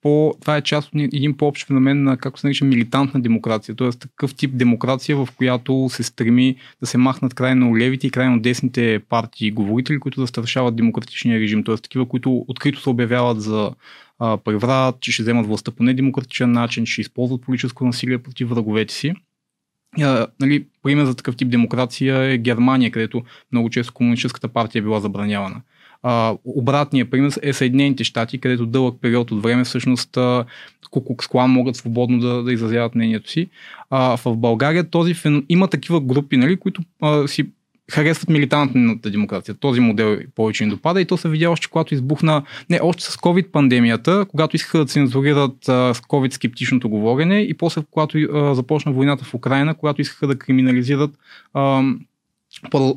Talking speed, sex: 170 wpm, male